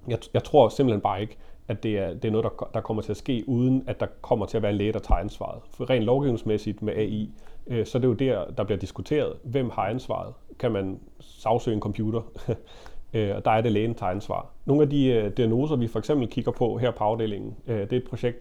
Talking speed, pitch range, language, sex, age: 250 wpm, 100-120 Hz, Danish, male, 30-49